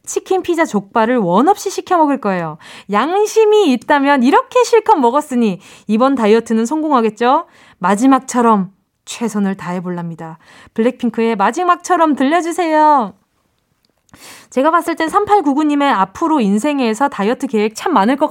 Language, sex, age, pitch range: Korean, female, 20-39, 215-320 Hz